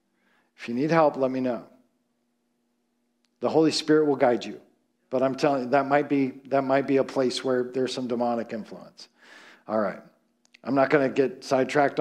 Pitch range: 150-225 Hz